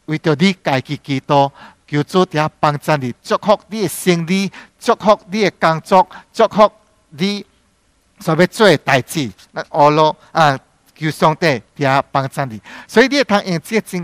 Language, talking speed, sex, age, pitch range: English, 180 wpm, male, 50-69, 140-200 Hz